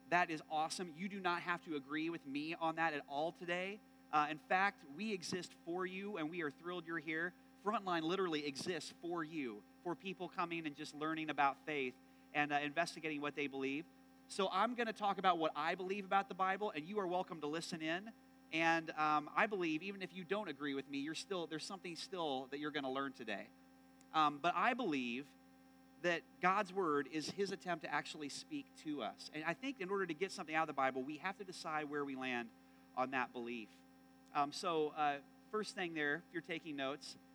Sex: male